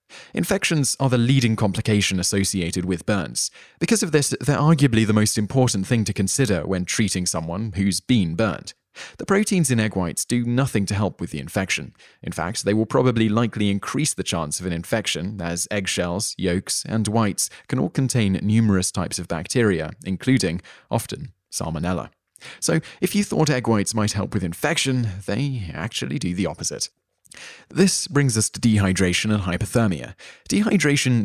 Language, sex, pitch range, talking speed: English, male, 95-125 Hz, 165 wpm